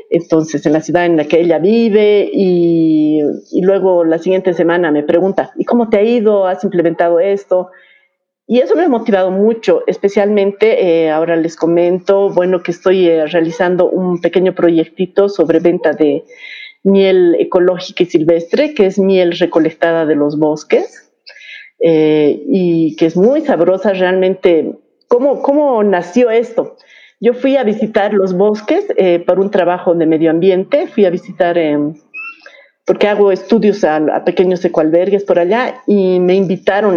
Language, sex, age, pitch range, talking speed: English, female, 40-59, 165-205 Hz, 160 wpm